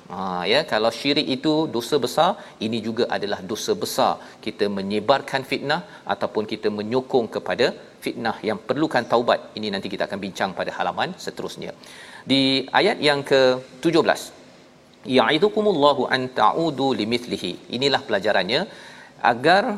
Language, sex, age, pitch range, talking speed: Malayalam, male, 40-59, 125-145 Hz, 125 wpm